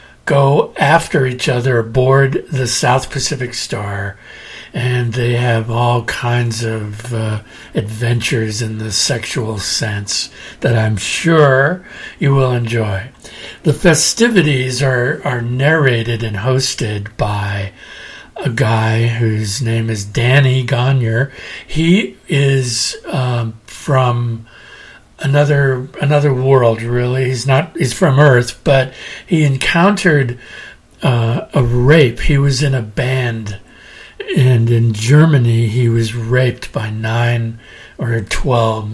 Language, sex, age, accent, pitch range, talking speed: English, male, 60-79, American, 115-140 Hz, 115 wpm